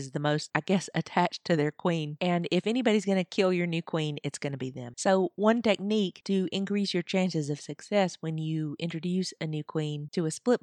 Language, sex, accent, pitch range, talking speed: English, female, American, 155-195 Hz, 225 wpm